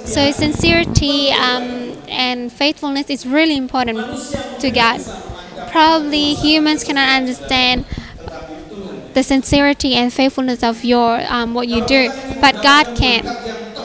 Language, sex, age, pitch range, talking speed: English, female, 20-39, 240-280 Hz, 115 wpm